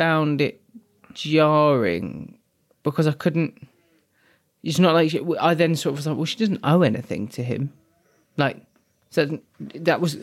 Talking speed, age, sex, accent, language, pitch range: 160 wpm, 20-39, male, British, English, 135-160 Hz